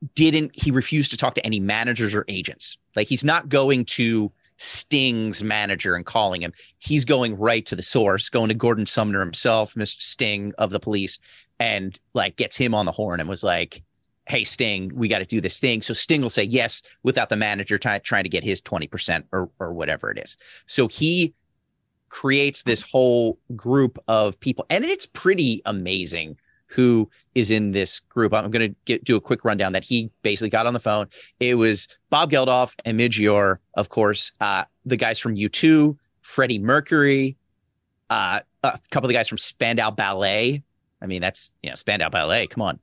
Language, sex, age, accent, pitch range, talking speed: English, male, 30-49, American, 100-130 Hz, 195 wpm